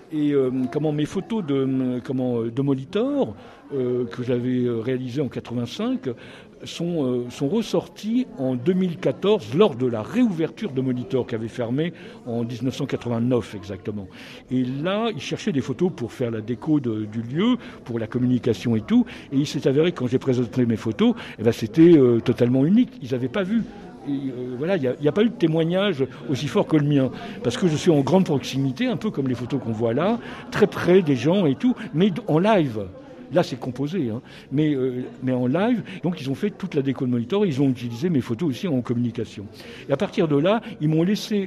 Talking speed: 210 wpm